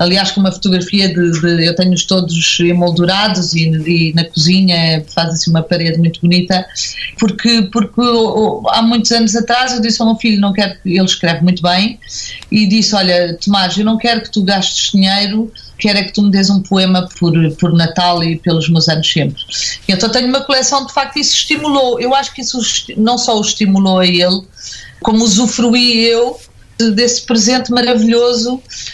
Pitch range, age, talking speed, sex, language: 175-230 Hz, 40-59, 195 wpm, female, Portuguese